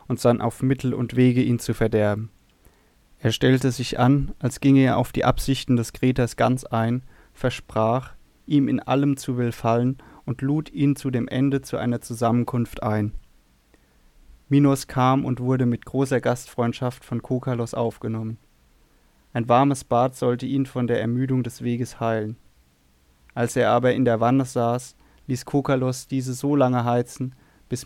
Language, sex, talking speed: German, male, 160 wpm